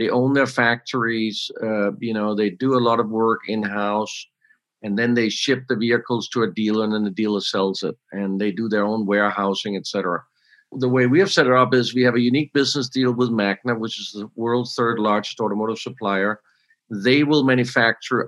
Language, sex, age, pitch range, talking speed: English, male, 50-69, 110-130 Hz, 210 wpm